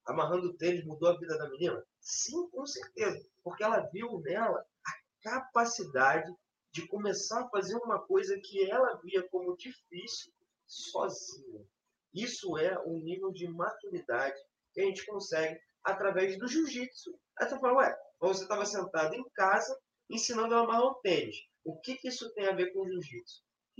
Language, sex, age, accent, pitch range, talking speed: Portuguese, male, 20-39, Brazilian, 175-285 Hz, 165 wpm